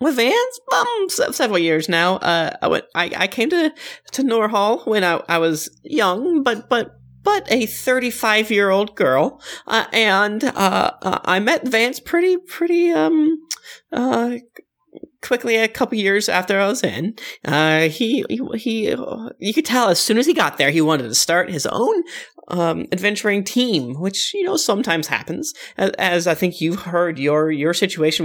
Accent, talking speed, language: American, 170 wpm, English